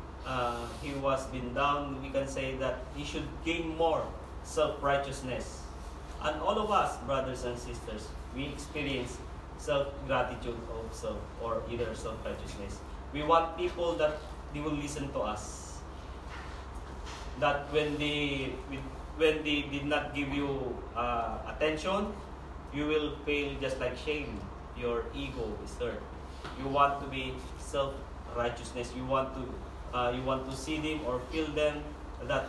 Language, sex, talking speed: English, male, 140 wpm